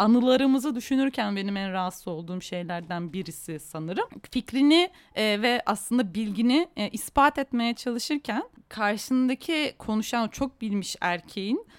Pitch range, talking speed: 190-275 Hz, 115 wpm